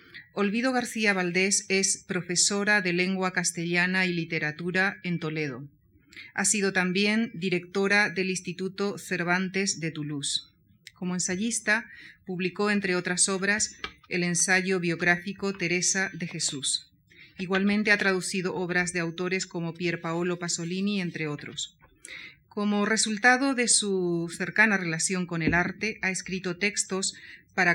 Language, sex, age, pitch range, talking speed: Spanish, female, 40-59, 170-195 Hz, 125 wpm